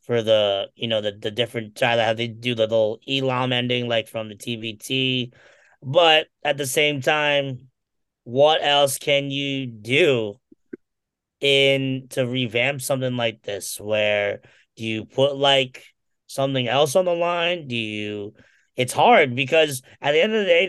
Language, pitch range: English, 120-140 Hz